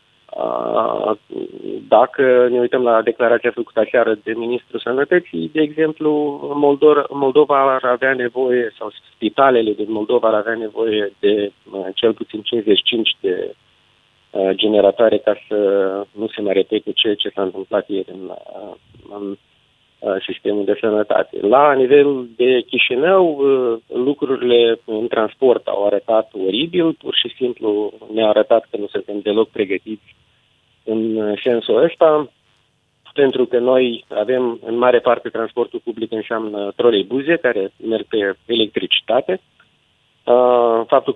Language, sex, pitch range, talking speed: Romanian, male, 110-135 Hz, 125 wpm